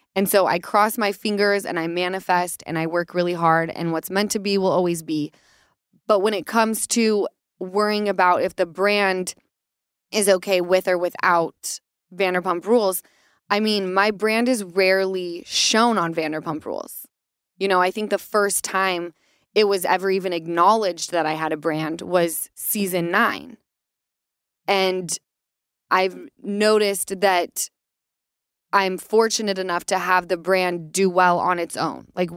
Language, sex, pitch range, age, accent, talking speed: English, female, 180-210 Hz, 20-39, American, 160 wpm